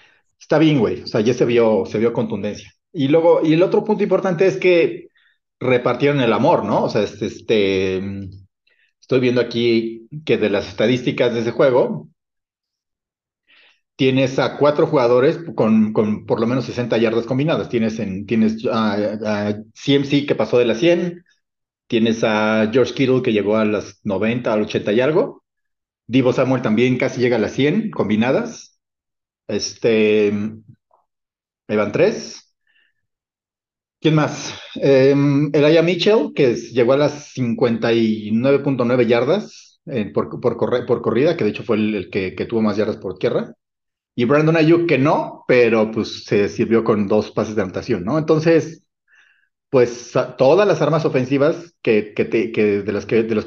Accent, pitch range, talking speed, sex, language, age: Mexican, 110-150 Hz, 155 wpm, male, Spanish, 40-59